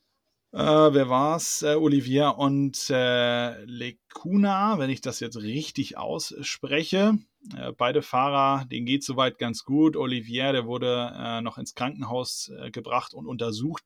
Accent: German